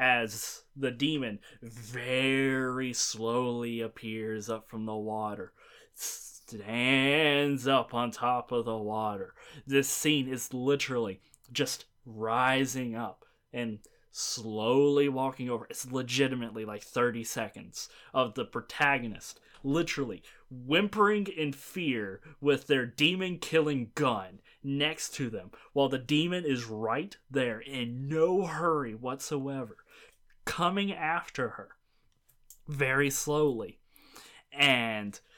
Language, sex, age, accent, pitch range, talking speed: English, male, 20-39, American, 120-165 Hz, 105 wpm